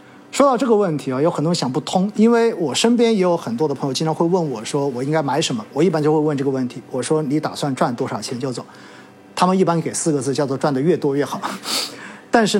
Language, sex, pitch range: Chinese, male, 140-185 Hz